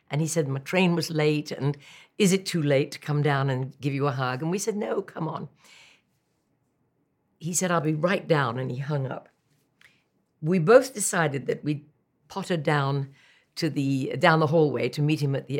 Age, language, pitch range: 60-79, English, 140-175 Hz